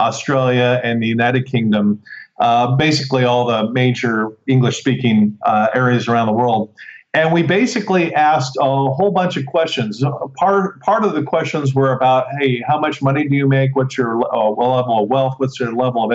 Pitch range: 130-155 Hz